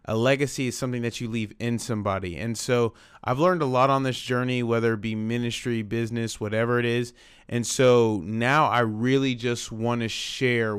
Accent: American